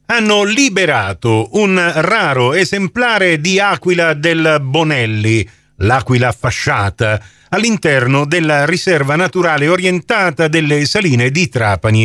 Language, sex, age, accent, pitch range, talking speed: Italian, male, 40-59, native, 120-160 Hz, 100 wpm